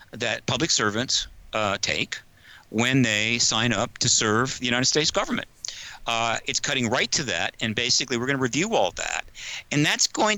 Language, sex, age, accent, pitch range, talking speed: English, male, 50-69, American, 110-140 Hz, 185 wpm